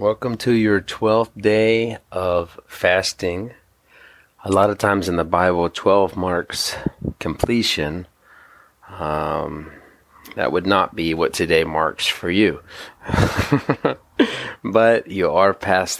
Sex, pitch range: male, 80-95 Hz